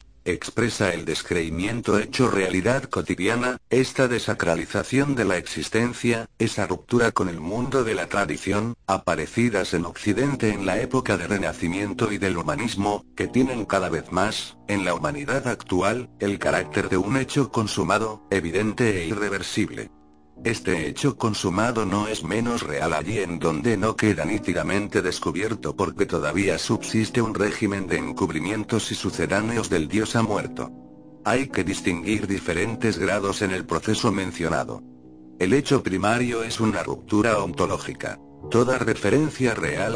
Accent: Spanish